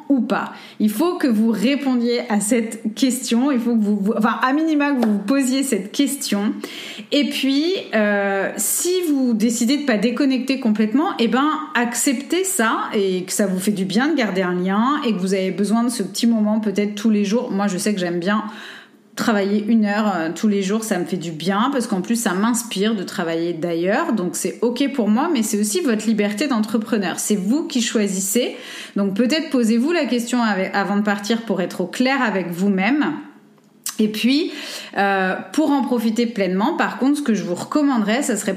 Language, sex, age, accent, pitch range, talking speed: French, female, 30-49, French, 200-255 Hz, 205 wpm